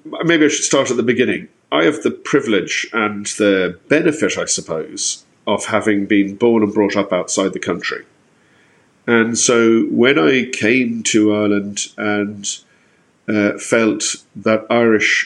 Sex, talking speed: male, 150 wpm